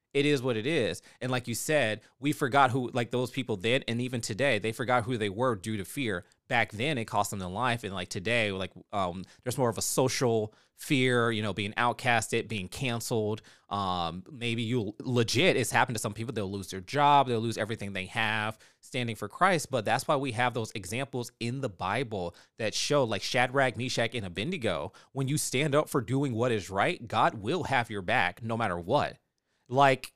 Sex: male